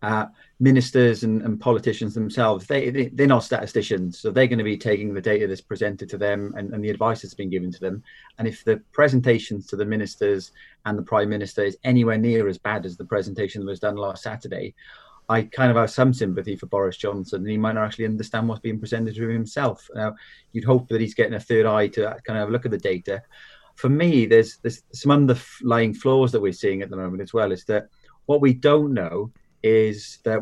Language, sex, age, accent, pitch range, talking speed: English, male, 30-49, British, 105-125 Hz, 235 wpm